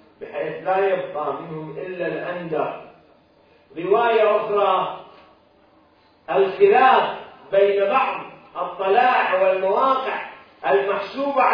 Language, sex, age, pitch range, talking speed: Arabic, male, 40-59, 190-260 Hz, 75 wpm